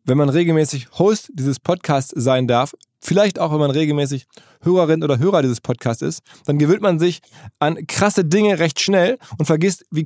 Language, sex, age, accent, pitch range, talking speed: German, male, 20-39, German, 140-175 Hz, 185 wpm